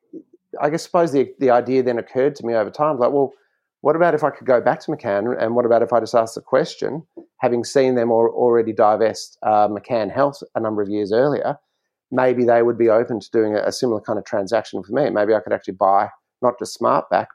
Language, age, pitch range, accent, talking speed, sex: English, 30-49, 105-125 Hz, Australian, 240 wpm, male